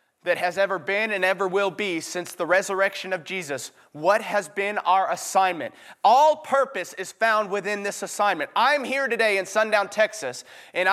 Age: 30-49